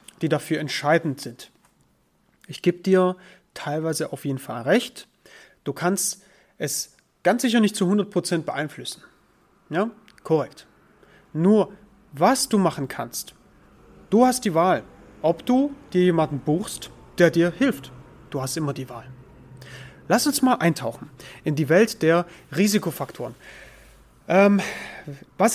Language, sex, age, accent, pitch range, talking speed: German, male, 30-49, German, 155-205 Hz, 130 wpm